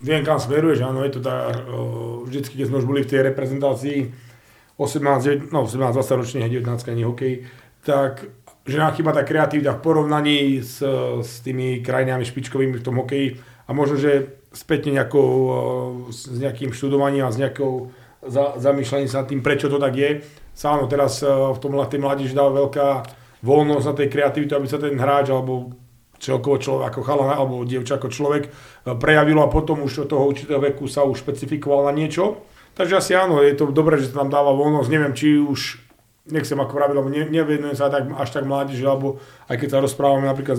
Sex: male